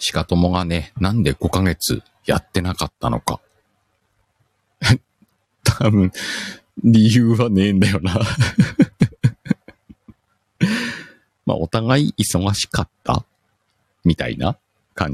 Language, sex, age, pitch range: Japanese, male, 50-69, 90-110 Hz